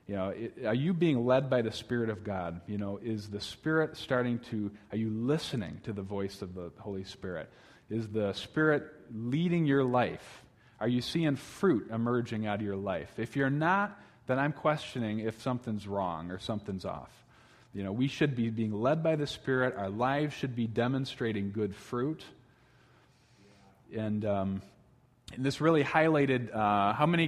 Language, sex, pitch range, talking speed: English, male, 110-140 Hz, 180 wpm